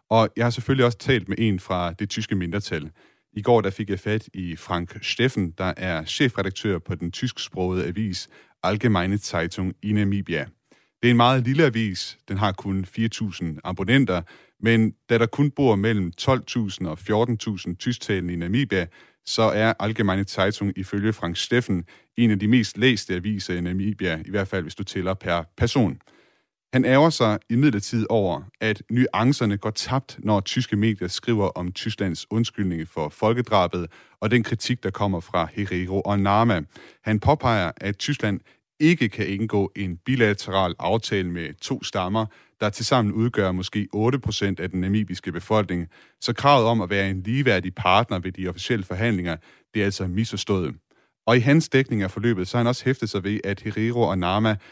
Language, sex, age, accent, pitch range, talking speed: Danish, male, 30-49, native, 95-115 Hz, 175 wpm